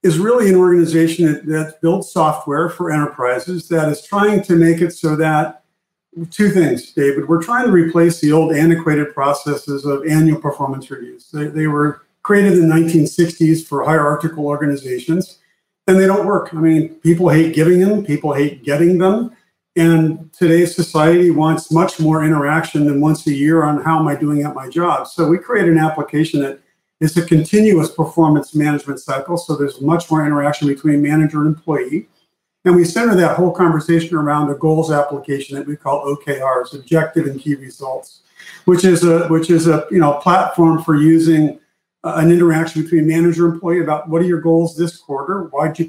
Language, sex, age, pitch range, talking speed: English, male, 50-69, 150-170 Hz, 185 wpm